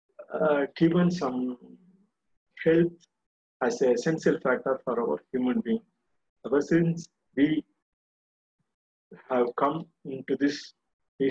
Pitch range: 130-170 Hz